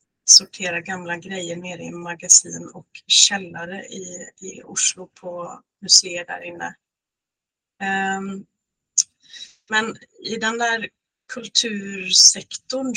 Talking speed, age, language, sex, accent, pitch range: 100 wpm, 30-49, Swedish, female, native, 180-210 Hz